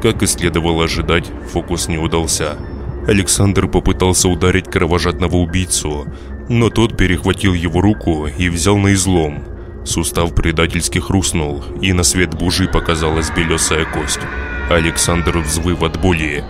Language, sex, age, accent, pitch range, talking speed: Russian, male, 20-39, native, 80-90 Hz, 125 wpm